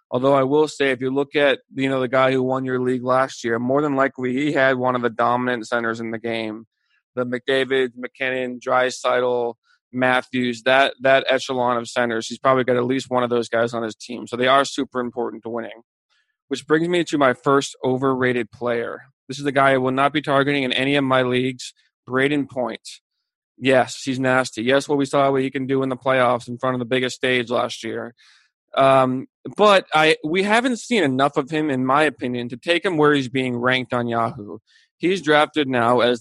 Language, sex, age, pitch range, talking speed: English, male, 20-39, 125-145 Hz, 220 wpm